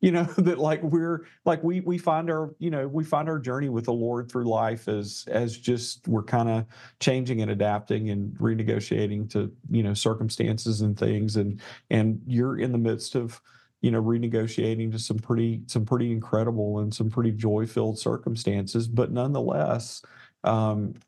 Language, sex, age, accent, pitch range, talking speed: English, male, 40-59, American, 105-120 Hz, 175 wpm